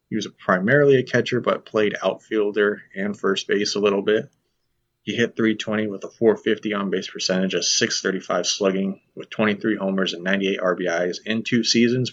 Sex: male